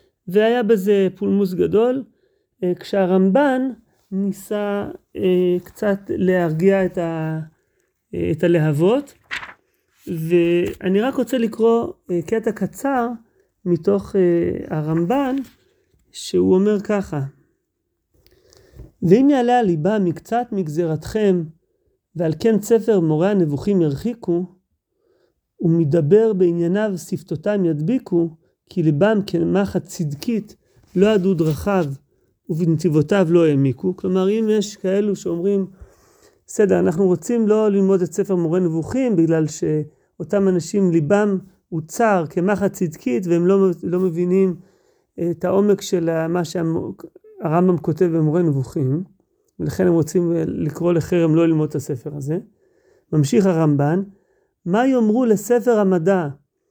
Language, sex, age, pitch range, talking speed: Hebrew, male, 40-59, 170-210 Hz, 105 wpm